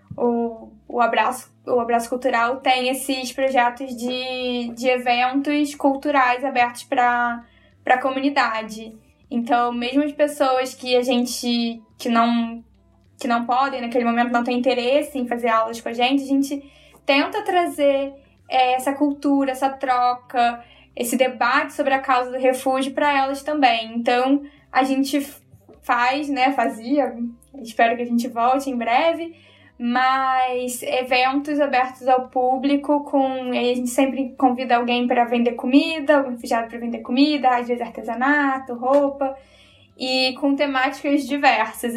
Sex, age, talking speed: female, 10-29, 135 wpm